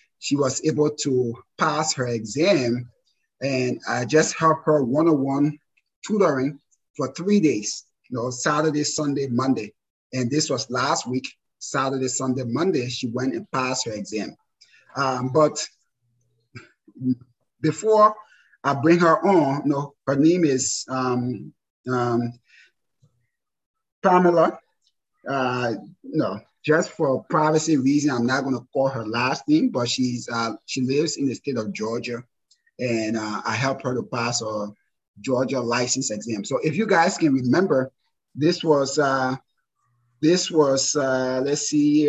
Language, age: English, 30-49